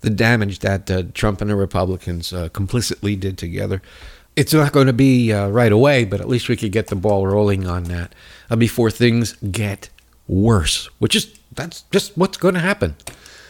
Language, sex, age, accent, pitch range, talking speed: English, male, 60-79, American, 100-140 Hz, 195 wpm